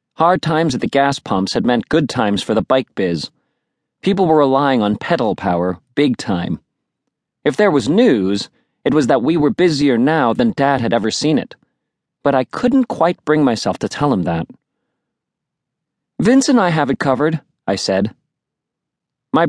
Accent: American